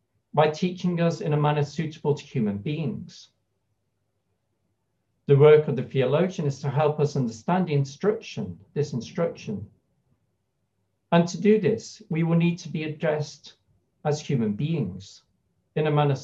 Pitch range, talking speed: 120-170 Hz, 150 wpm